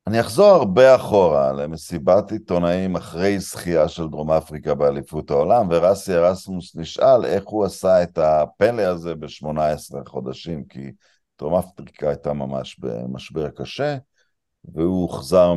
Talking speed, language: 125 wpm, Hebrew